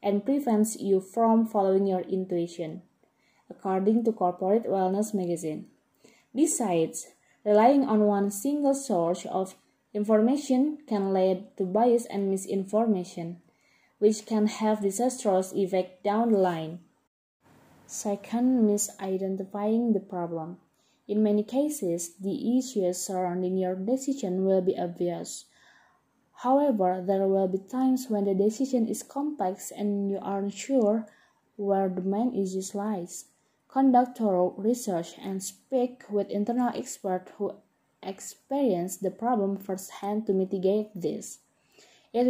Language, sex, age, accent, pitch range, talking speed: English, female, 20-39, Indonesian, 190-225 Hz, 120 wpm